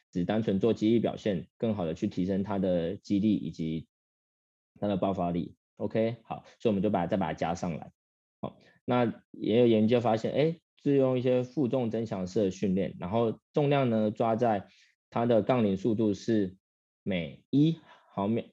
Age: 20-39